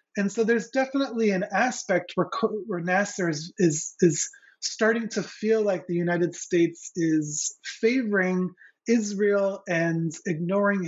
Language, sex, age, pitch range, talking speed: English, male, 30-49, 165-205 Hz, 130 wpm